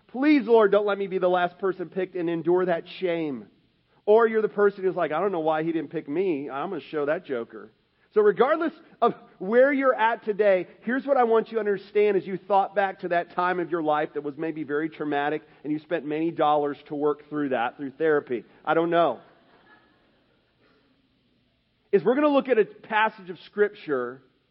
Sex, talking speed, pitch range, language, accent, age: male, 210 wpm, 175-220 Hz, English, American, 40-59